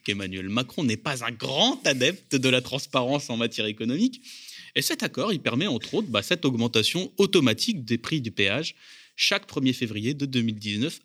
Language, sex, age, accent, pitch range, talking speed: French, male, 30-49, French, 115-190 Hz, 180 wpm